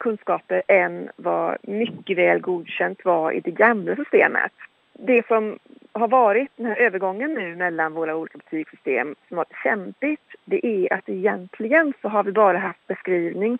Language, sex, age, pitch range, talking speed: Finnish, female, 40-59, 175-235 Hz, 165 wpm